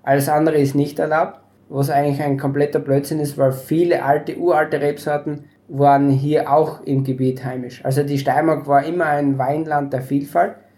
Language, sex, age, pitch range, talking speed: German, male, 20-39, 140-160 Hz, 175 wpm